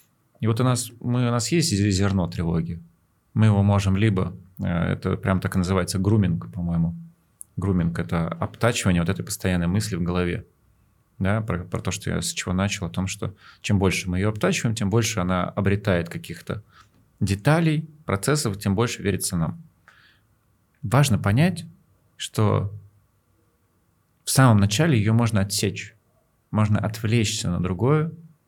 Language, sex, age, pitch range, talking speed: Russian, male, 30-49, 95-120 Hz, 145 wpm